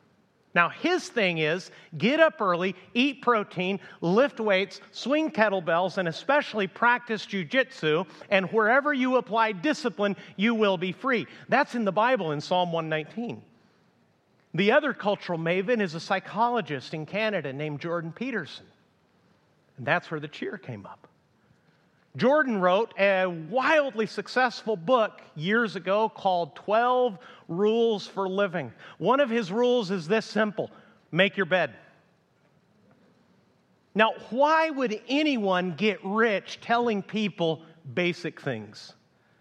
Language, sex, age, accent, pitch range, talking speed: English, male, 50-69, American, 170-225 Hz, 130 wpm